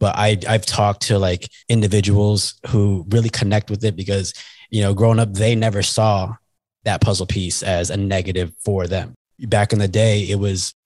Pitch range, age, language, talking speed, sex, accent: 100-115 Hz, 20-39, English, 190 wpm, male, American